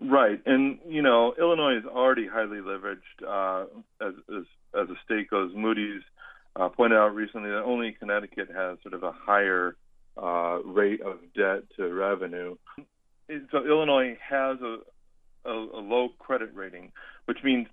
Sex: male